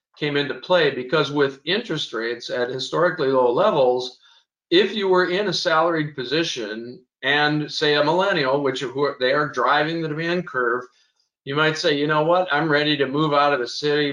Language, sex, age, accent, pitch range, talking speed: English, male, 50-69, American, 130-160 Hz, 185 wpm